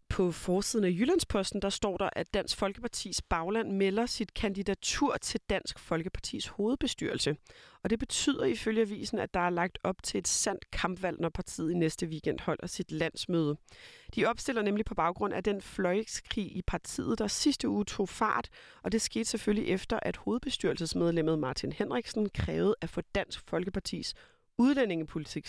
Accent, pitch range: native, 175-225 Hz